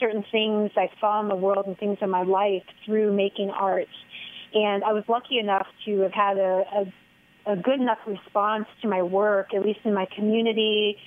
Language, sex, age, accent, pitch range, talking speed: English, female, 30-49, American, 195-220 Hz, 200 wpm